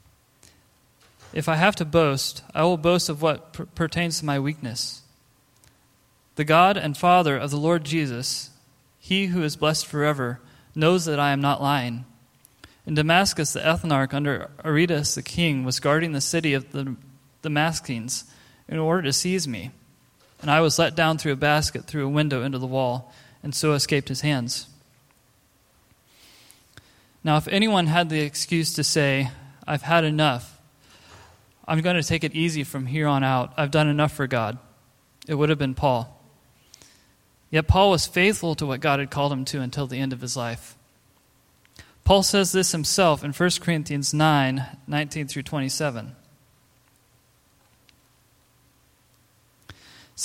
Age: 20-39